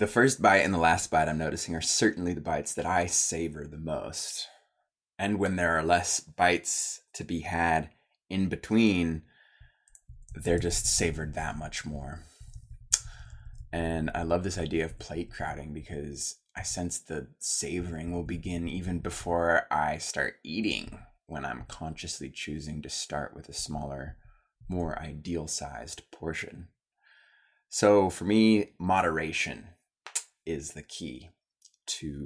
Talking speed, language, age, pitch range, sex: 140 wpm, English, 20-39, 80-90 Hz, male